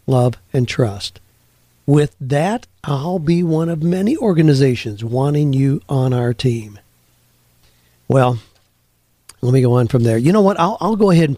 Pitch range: 115-150 Hz